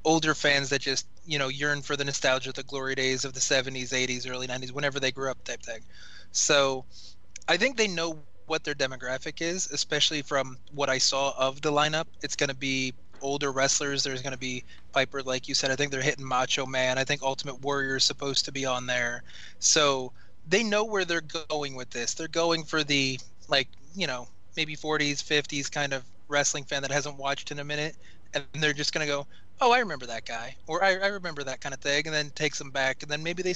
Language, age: English, 20-39